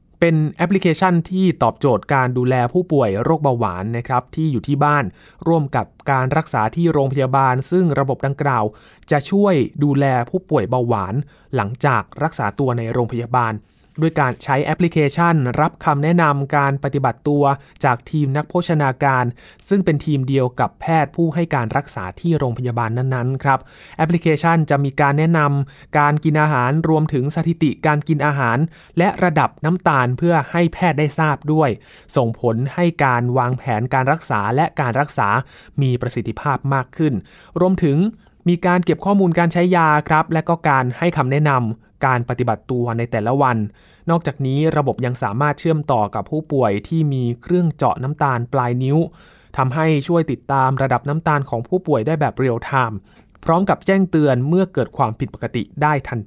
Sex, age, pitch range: male, 20-39, 125-160 Hz